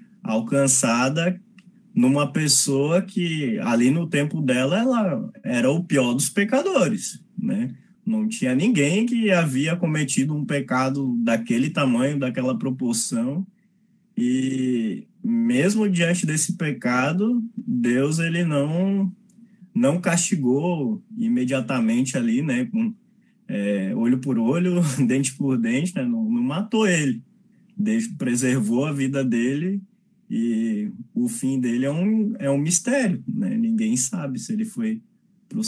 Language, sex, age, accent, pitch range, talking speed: Portuguese, male, 20-39, Brazilian, 135-220 Hz, 125 wpm